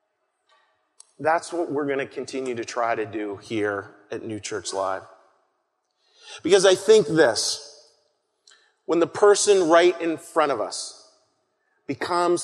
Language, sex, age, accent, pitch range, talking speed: English, male, 30-49, American, 135-200 Hz, 135 wpm